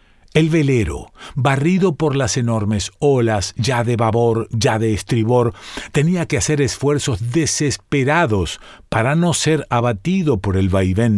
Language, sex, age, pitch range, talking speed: Spanish, male, 50-69, 105-145 Hz, 135 wpm